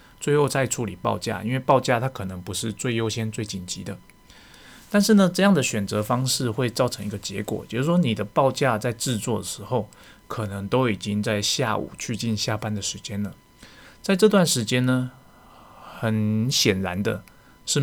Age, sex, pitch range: 20-39, male, 105-125 Hz